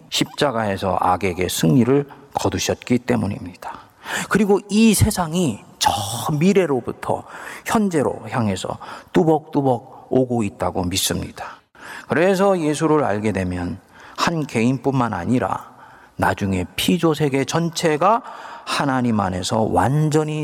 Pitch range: 105-150 Hz